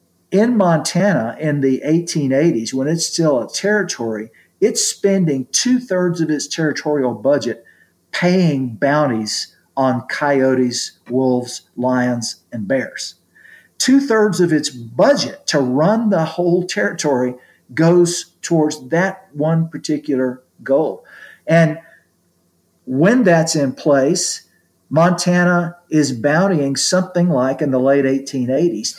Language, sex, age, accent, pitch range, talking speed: English, male, 50-69, American, 130-175 Hz, 110 wpm